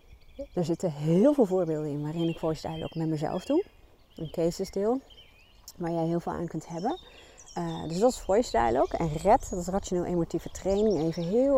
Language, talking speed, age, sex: Dutch, 190 wpm, 30-49, female